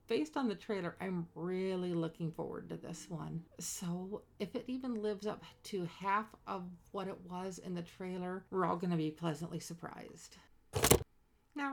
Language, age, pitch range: English, 40-59, 175-225 Hz